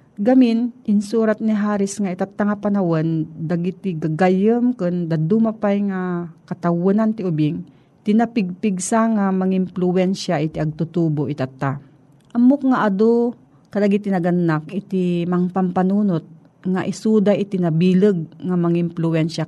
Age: 40-59